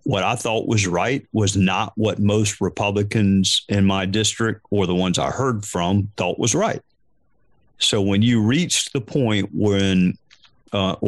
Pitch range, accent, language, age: 100-120 Hz, American, English, 50-69